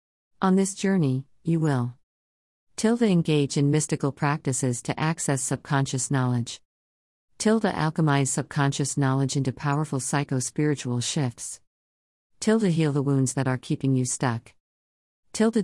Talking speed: 125 wpm